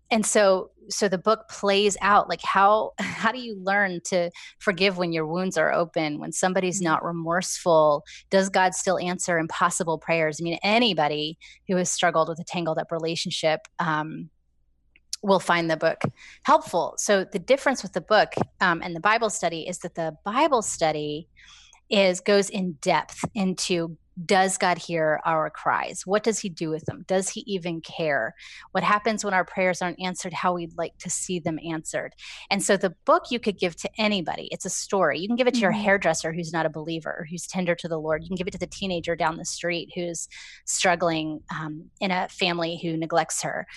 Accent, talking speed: American, 195 wpm